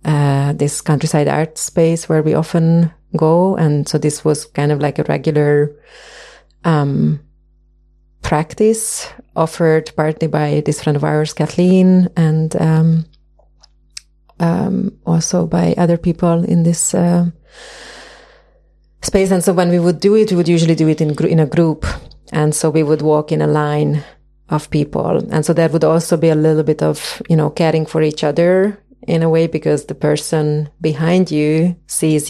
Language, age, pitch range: English, 30-49, 150-170 Hz